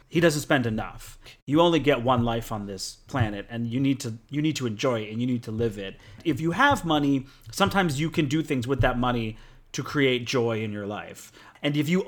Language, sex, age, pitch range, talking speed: English, male, 30-49, 110-140 Hz, 240 wpm